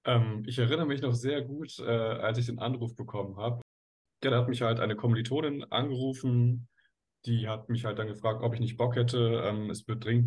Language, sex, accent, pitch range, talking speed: German, male, German, 105-120 Hz, 200 wpm